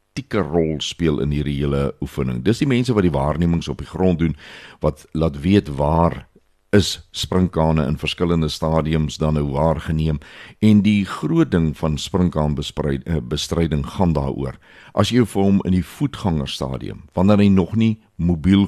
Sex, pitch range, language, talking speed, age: male, 75-95 Hz, Swedish, 165 wpm, 60-79